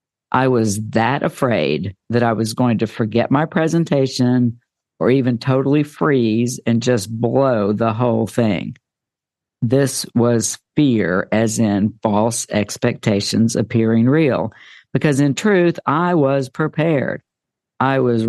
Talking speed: 130 wpm